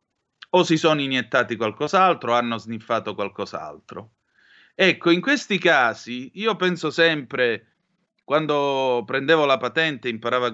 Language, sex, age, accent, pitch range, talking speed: Italian, male, 30-49, native, 115-170 Hz, 130 wpm